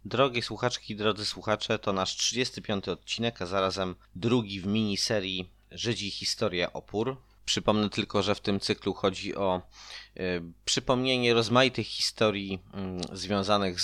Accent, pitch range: native, 95-105 Hz